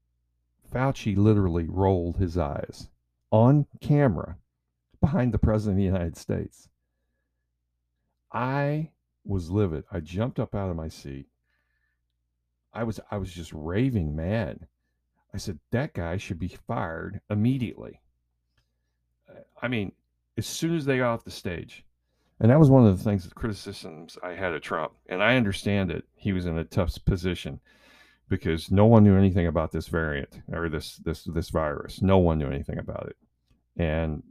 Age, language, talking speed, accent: 50-69, English, 160 wpm, American